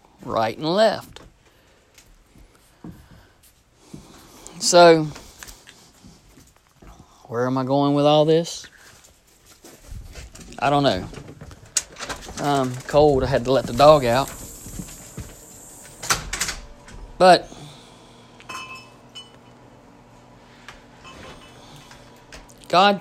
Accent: American